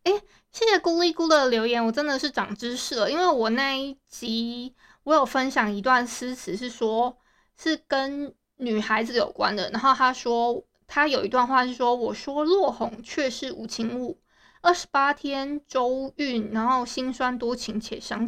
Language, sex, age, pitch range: Chinese, female, 20-39, 235-290 Hz